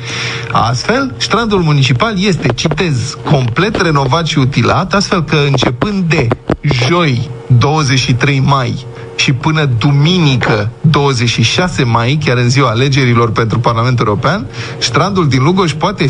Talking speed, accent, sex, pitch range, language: 120 wpm, native, male, 125-185 Hz, Romanian